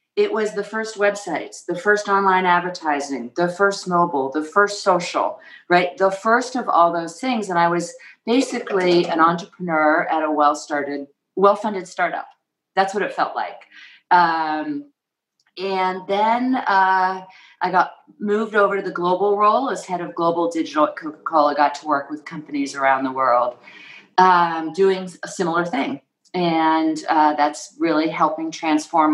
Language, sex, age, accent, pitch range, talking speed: English, female, 40-59, American, 155-200 Hz, 155 wpm